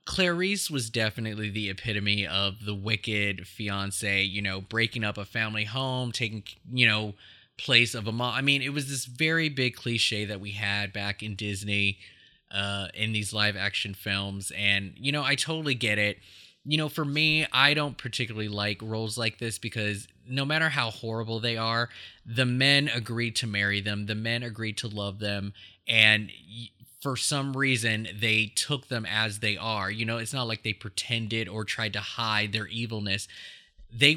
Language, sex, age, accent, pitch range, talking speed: English, male, 20-39, American, 105-120 Hz, 185 wpm